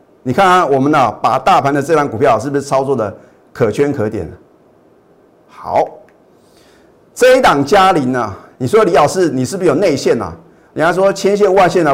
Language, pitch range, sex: Chinese, 130-190 Hz, male